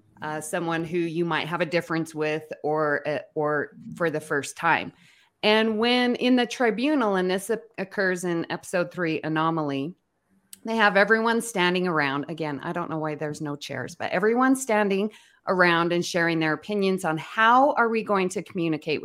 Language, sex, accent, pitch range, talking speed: English, female, American, 155-220 Hz, 180 wpm